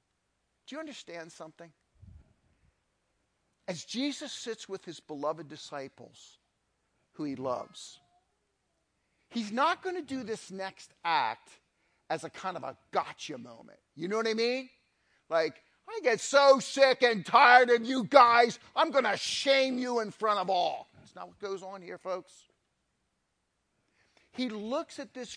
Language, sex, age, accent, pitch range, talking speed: English, male, 50-69, American, 170-265 Hz, 150 wpm